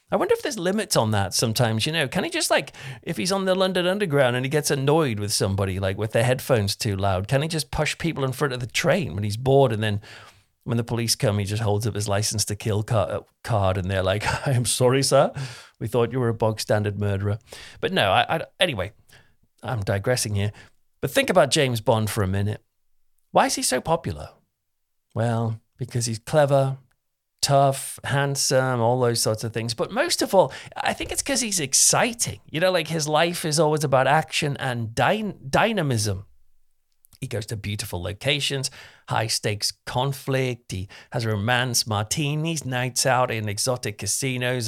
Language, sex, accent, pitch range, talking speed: English, male, British, 110-150 Hz, 195 wpm